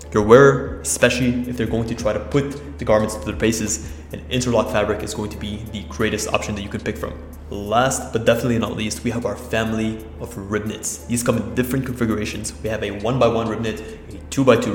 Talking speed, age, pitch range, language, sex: 225 wpm, 20-39, 105-120 Hz, English, male